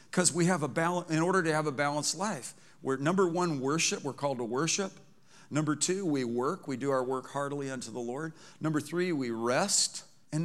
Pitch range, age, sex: 130-165 Hz, 50-69, male